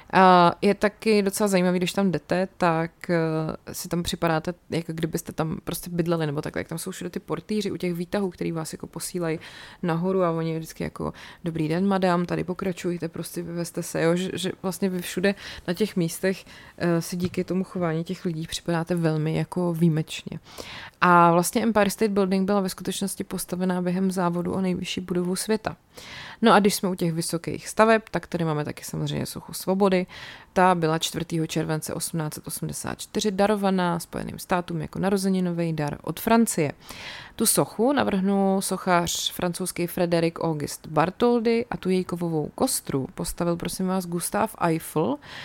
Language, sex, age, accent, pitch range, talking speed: Czech, female, 20-39, native, 165-190 Hz, 165 wpm